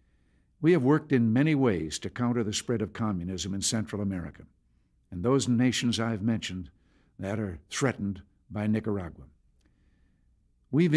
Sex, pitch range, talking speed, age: male, 95-125 Hz, 140 wpm, 60-79